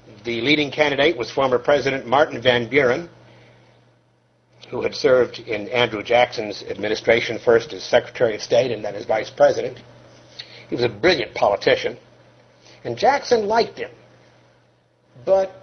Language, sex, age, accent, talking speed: English, male, 60-79, American, 140 wpm